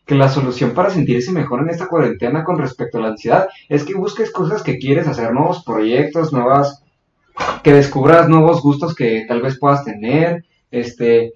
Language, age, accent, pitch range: Spanish, 20-39, Mexican, 120-155 Hz